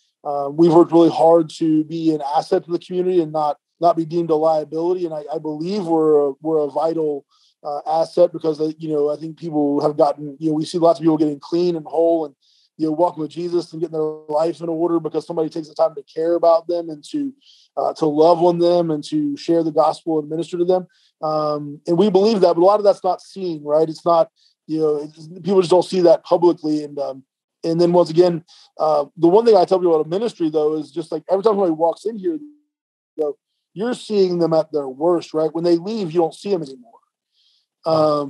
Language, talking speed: English, 245 wpm